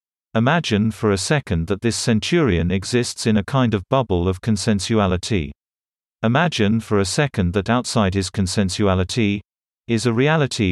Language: English